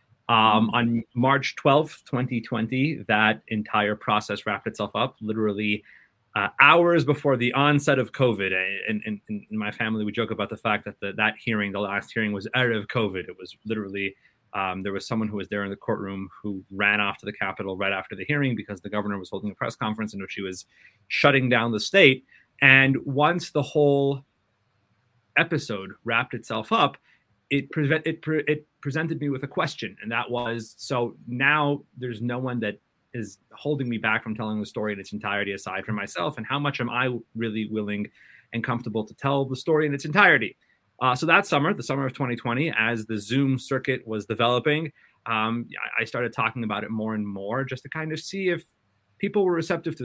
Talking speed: 205 wpm